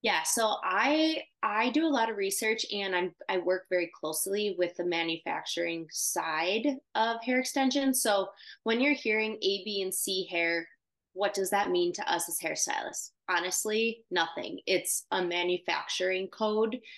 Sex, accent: female, American